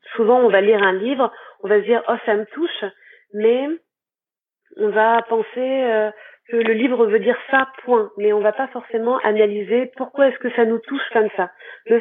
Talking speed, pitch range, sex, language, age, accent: 210 wpm, 215-265 Hz, female, French, 30-49, French